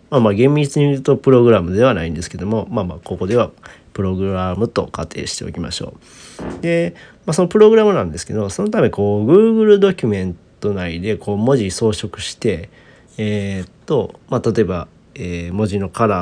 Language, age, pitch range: Japanese, 40-59, 100-155 Hz